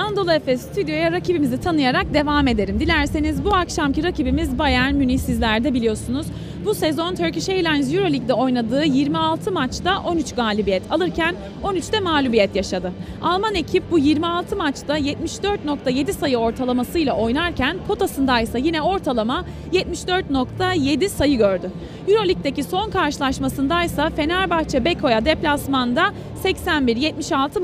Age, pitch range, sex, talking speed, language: 30-49, 260-360 Hz, female, 115 wpm, Turkish